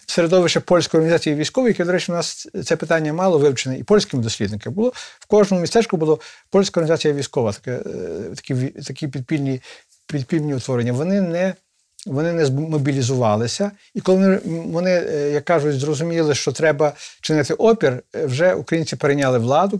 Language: Ukrainian